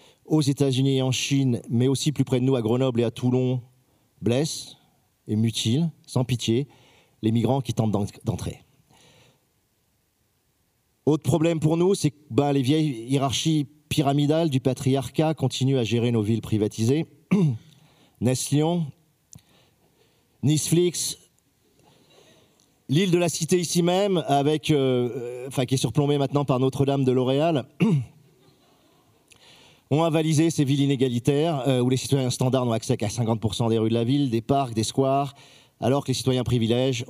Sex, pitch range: male, 115-145 Hz